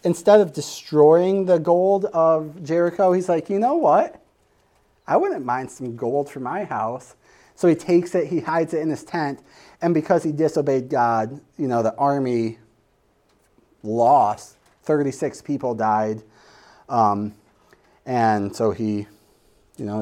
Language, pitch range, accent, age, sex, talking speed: English, 125-185 Hz, American, 30-49, male, 145 wpm